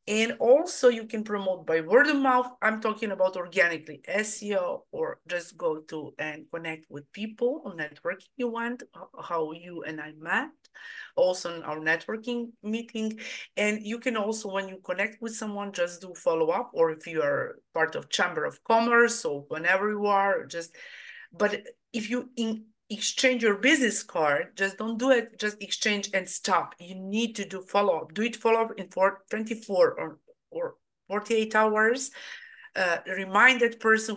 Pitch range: 190-245 Hz